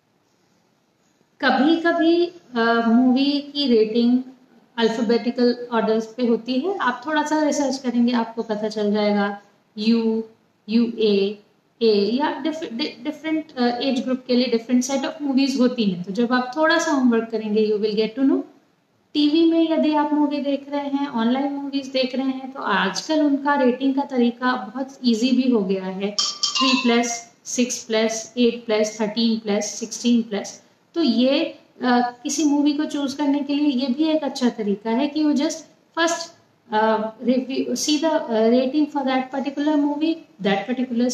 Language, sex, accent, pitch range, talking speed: Hindi, female, native, 230-285 Hz, 150 wpm